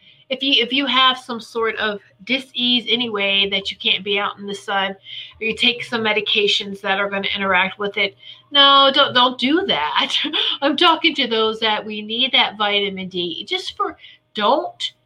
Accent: American